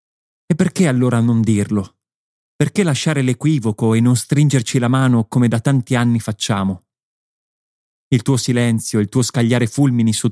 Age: 30-49